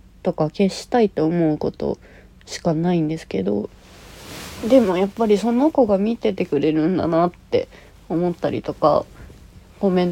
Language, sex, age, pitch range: Japanese, female, 30-49, 160-210 Hz